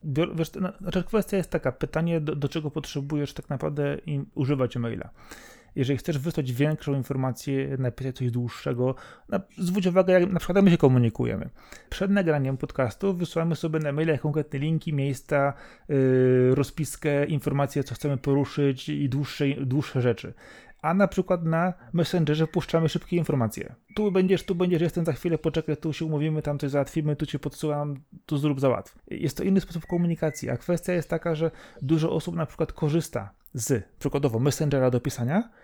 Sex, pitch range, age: male, 140-175 Hz, 30-49